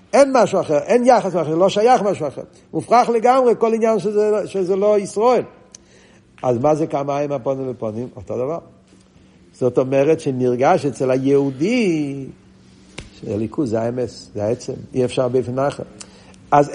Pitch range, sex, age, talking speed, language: 130-180 Hz, male, 50-69, 145 wpm, Hebrew